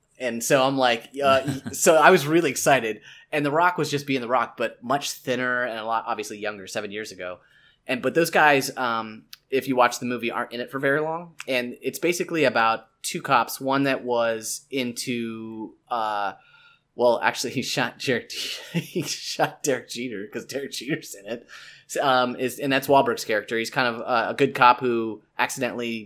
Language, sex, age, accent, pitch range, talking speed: English, male, 20-39, American, 120-150 Hz, 195 wpm